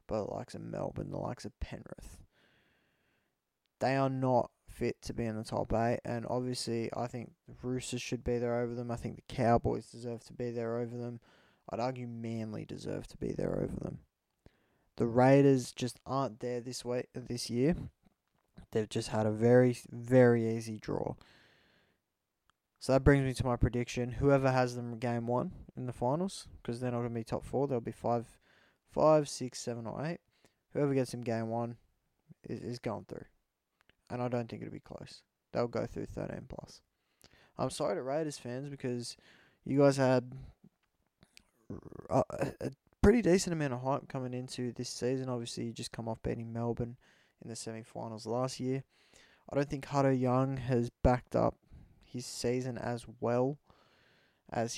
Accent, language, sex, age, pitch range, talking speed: Australian, English, male, 20-39, 115-130 Hz, 180 wpm